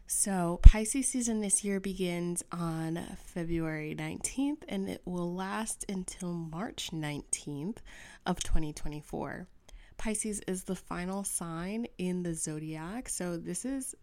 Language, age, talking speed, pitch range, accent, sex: English, 20-39, 125 wpm, 170-215 Hz, American, female